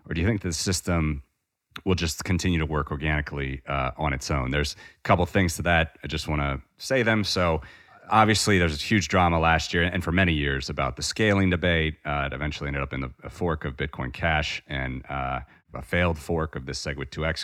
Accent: American